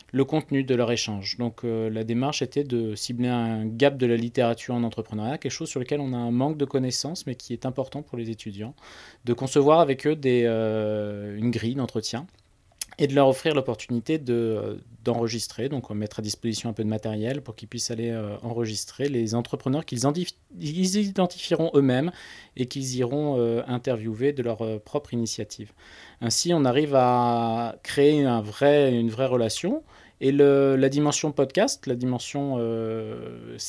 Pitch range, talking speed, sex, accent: 110-140 Hz, 180 wpm, male, French